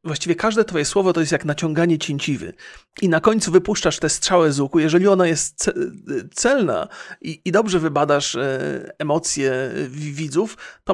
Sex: male